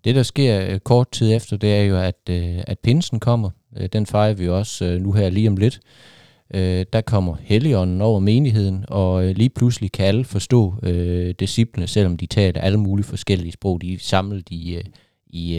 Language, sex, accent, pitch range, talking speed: Danish, male, native, 90-115 Hz, 175 wpm